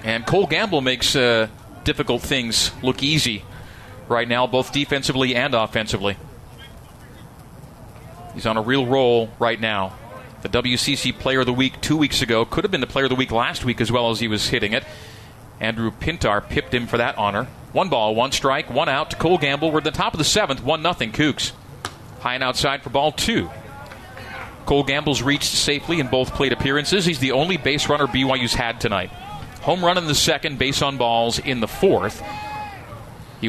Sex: male